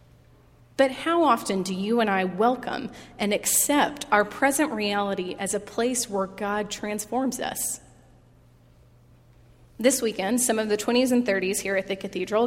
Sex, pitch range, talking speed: female, 200-255 Hz, 155 wpm